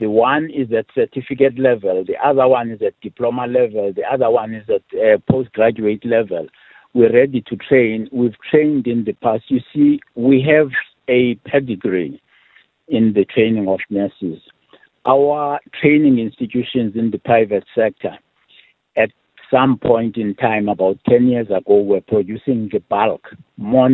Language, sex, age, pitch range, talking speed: English, male, 60-79, 105-135 Hz, 155 wpm